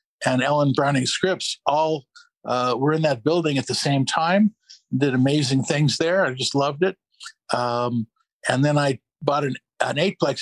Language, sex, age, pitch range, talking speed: English, male, 50-69, 135-165 Hz, 175 wpm